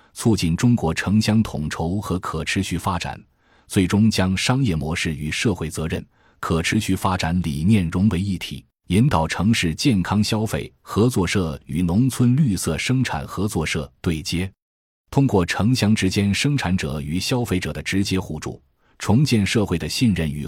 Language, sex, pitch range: Chinese, male, 80-105 Hz